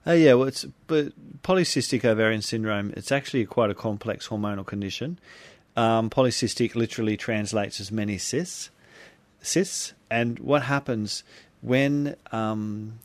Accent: Australian